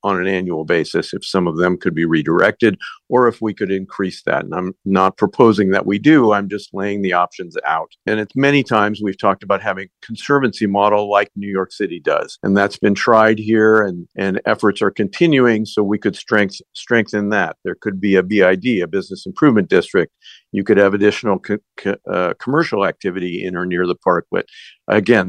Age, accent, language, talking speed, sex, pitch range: 50-69, American, English, 200 wpm, male, 100-115 Hz